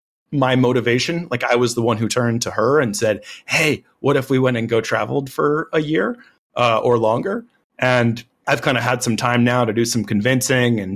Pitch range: 115-135 Hz